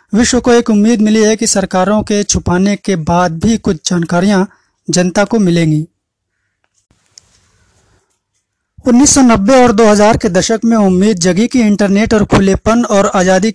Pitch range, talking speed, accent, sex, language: 170-220 Hz, 140 wpm, native, male, Hindi